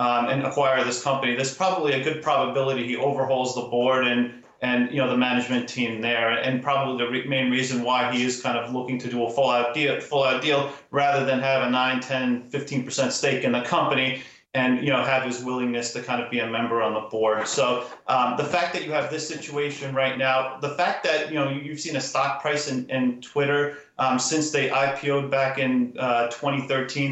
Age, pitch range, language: 30-49, 125-140 Hz, English